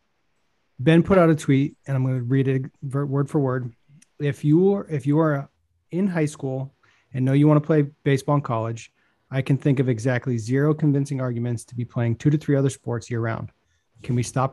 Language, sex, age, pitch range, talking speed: English, male, 30-49, 125-150 Hz, 220 wpm